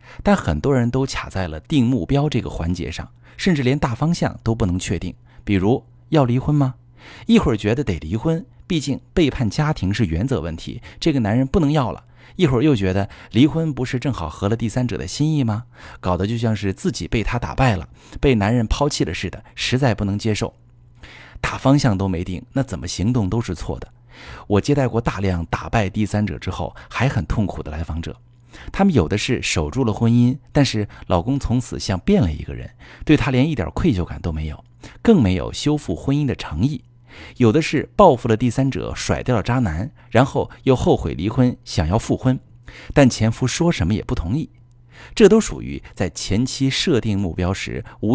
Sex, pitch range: male, 100-130 Hz